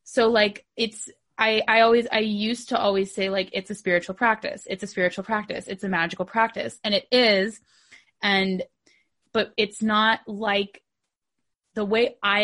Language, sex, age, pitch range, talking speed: English, female, 20-39, 185-215 Hz, 170 wpm